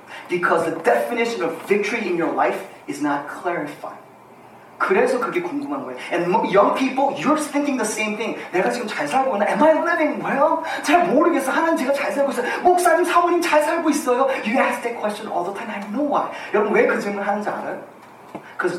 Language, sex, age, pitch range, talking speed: English, male, 30-49, 220-305 Hz, 120 wpm